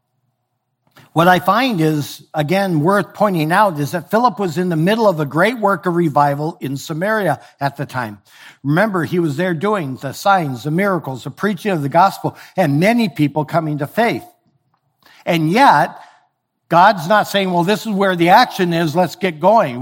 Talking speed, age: 185 wpm, 60-79